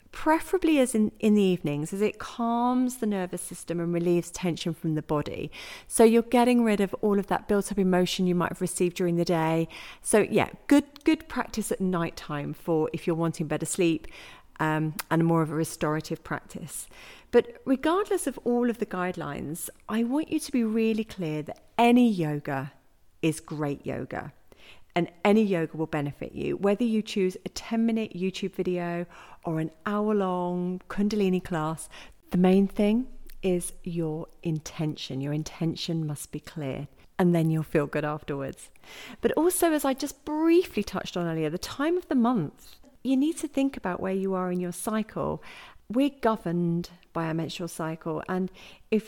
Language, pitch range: English, 165-225 Hz